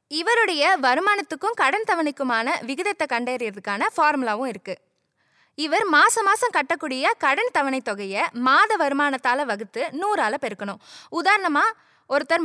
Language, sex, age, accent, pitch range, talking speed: Tamil, female, 20-39, native, 250-355 Hz, 105 wpm